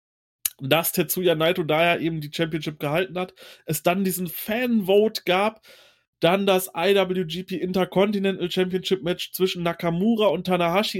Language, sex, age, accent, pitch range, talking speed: German, male, 30-49, German, 170-205 Hz, 130 wpm